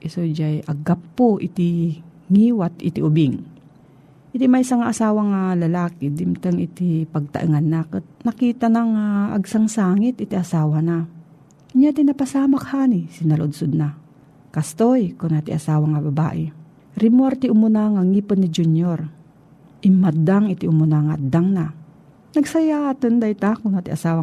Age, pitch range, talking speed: 40-59, 160-220 Hz, 130 wpm